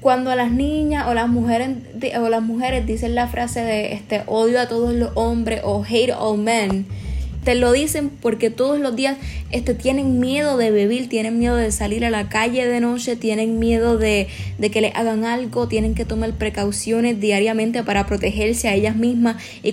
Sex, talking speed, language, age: female, 190 wpm, Spanish, 10-29